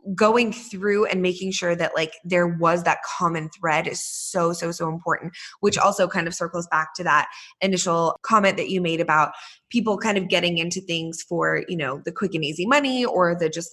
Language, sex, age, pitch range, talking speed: English, female, 20-39, 165-190 Hz, 210 wpm